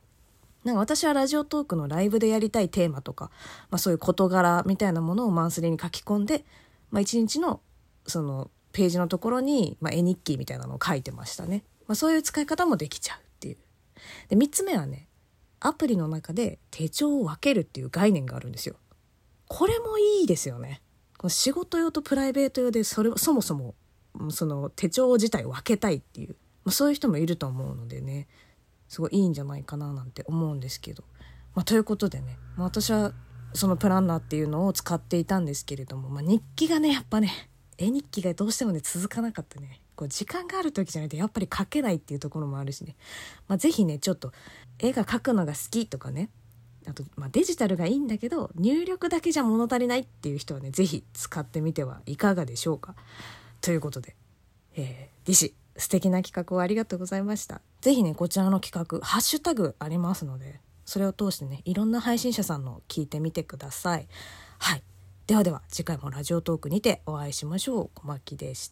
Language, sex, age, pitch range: Japanese, female, 20-39, 140-220 Hz